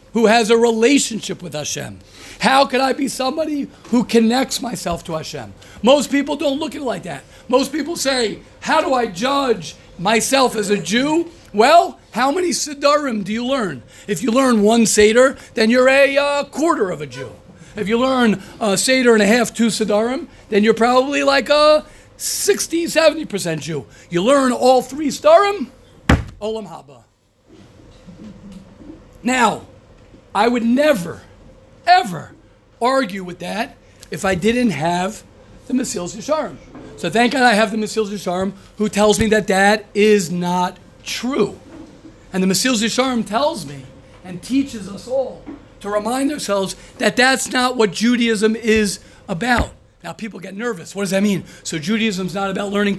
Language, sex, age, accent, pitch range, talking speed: English, male, 50-69, American, 195-255 Hz, 165 wpm